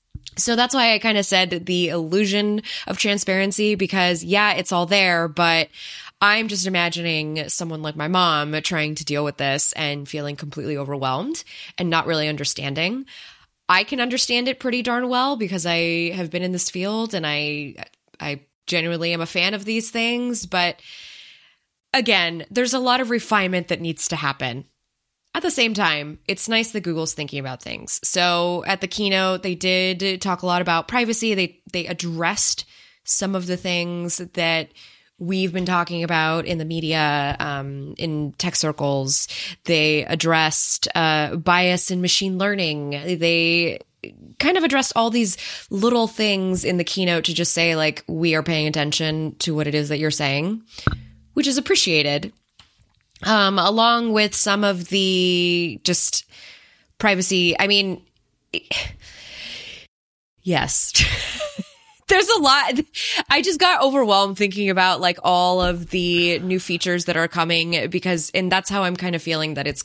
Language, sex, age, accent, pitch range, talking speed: English, female, 20-39, American, 160-205 Hz, 160 wpm